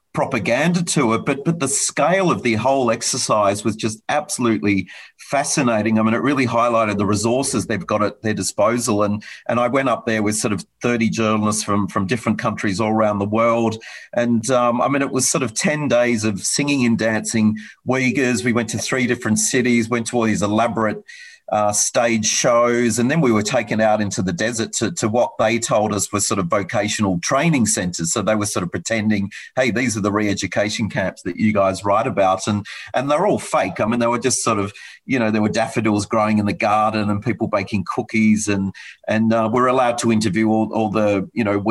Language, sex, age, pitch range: English, male, 40-59, 105-120 Hz